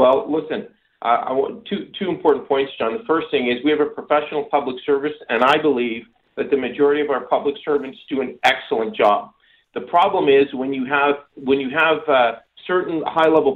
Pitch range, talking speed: 145-210 Hz, 205 wpm